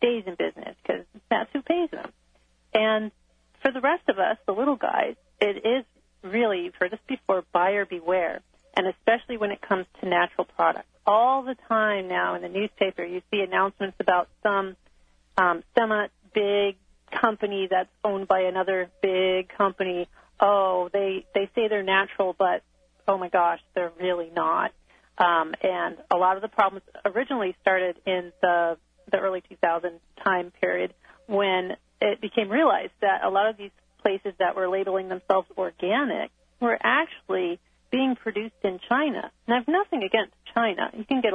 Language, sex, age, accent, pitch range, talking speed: English, female, 40-59, American, 185-220 Hz, 165 wpm